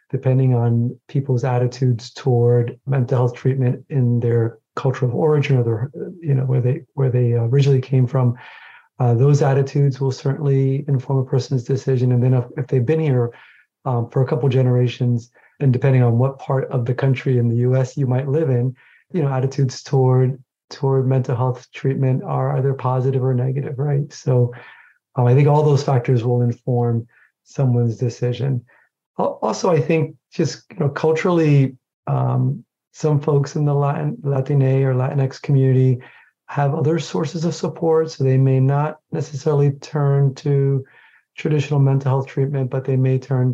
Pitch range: 125-145 Hz